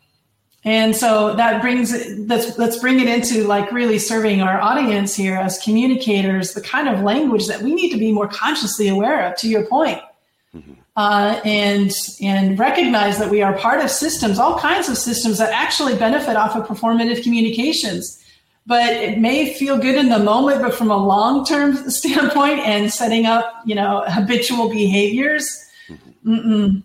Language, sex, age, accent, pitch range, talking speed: English, female, 40-59, American, 200-235 Hz, 170 wpm